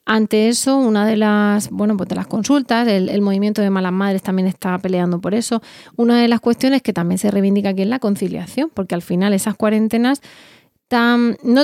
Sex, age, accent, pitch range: female, 20-39, Spanish, 195-235 Hz